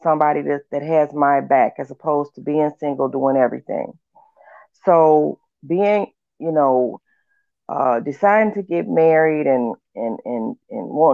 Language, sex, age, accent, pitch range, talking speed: English, female, 30-49, American, 140-170 Hz, 145 wpm